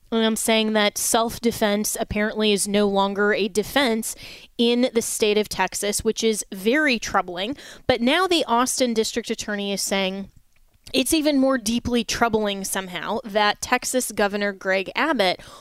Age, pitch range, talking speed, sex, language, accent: 20-39, 205-240 Hz, 145 wpm, female, English, American